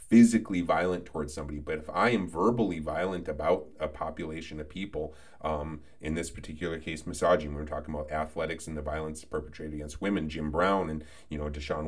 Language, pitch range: English, 75-95 Hz